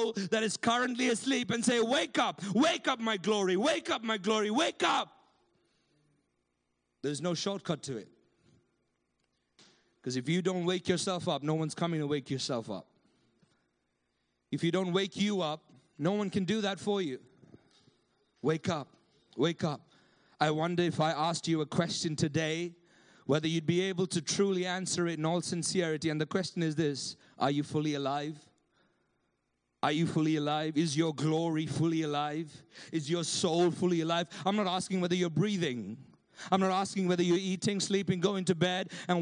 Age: 30-49